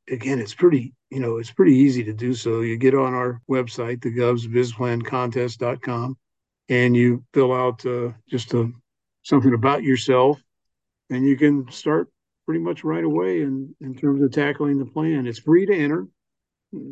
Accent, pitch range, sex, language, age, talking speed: American, 120-150 Hz, male, English, 50-69, 165 wpm